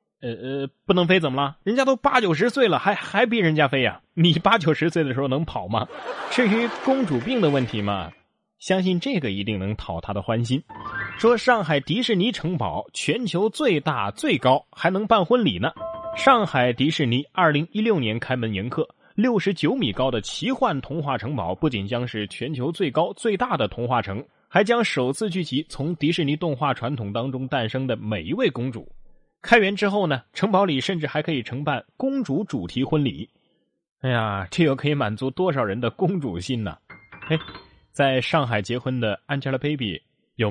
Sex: male